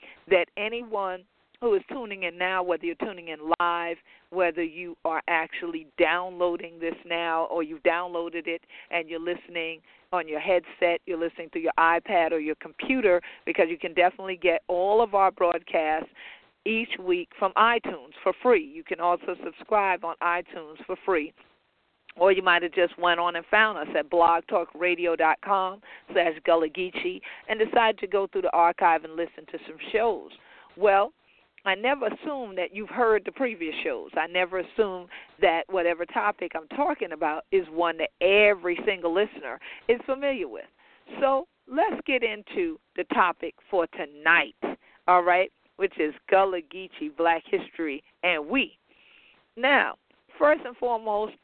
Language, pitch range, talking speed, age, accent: English, 170-220 Hz, 160 wpm, 50-69, American